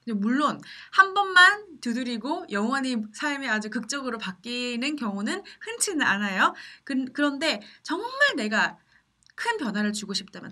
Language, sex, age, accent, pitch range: Korean, female, 20-39, native, 190-290 Hz